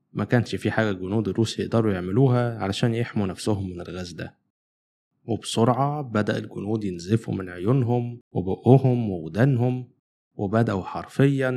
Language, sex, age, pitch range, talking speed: Arabic, male, 20-39, 95-120 Hz, 125 wpm